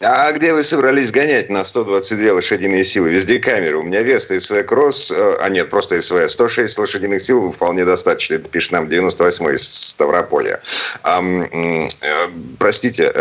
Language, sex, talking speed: Russian, male, 140 wpm